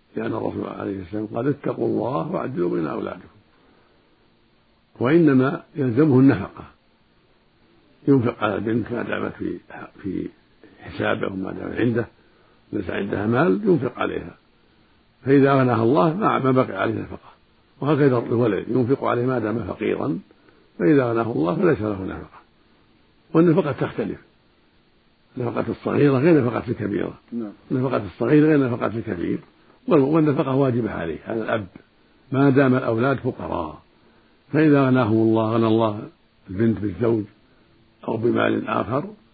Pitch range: 110-140 Hz